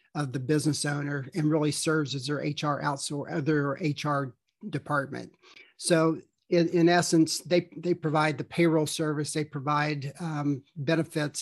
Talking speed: 145 wpm